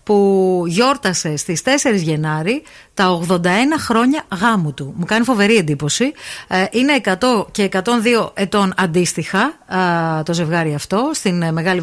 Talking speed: 125 wpm